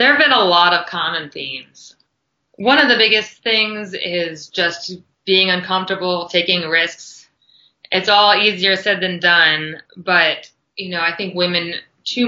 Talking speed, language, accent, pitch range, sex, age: 155 wpm, English, American, 165-205 Hz, female, 20-39